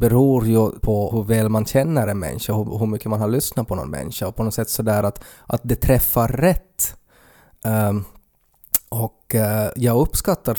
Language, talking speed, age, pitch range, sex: Swedish, 195 wpm, 20-39, 105-125 Hz, male